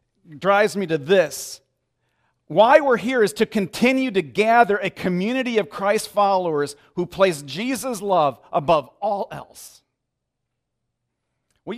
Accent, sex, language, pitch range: American, male, English, 130-185 Hz